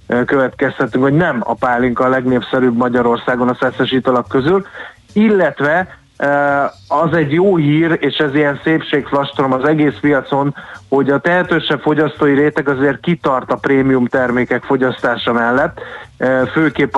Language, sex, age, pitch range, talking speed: Hungarian, male, 30-49, 130-150 Hz, 125 wpm